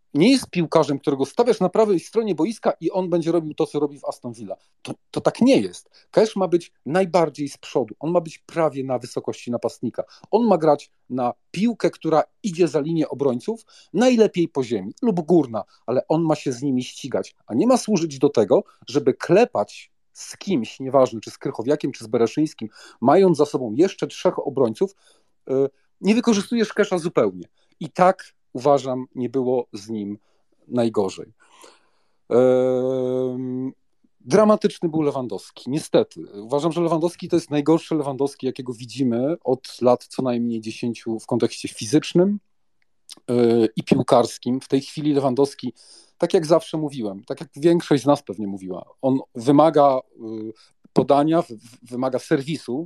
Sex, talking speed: male, 155 wpm